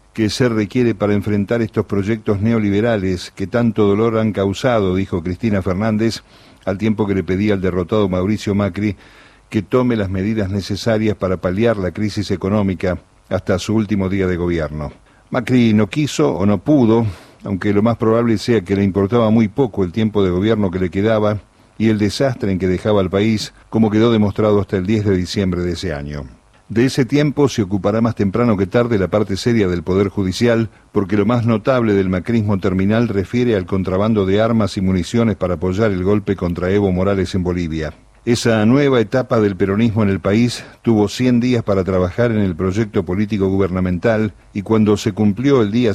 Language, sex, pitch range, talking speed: Spanish, male, 95-115 Hz, 190 wpm